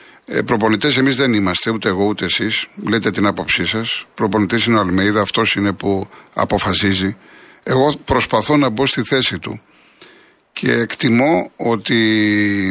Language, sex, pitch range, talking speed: Greek, male, 100-125 Hz, 140 wpm